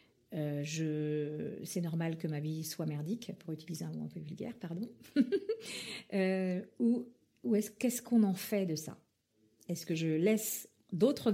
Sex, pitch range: female, 160-205 Hz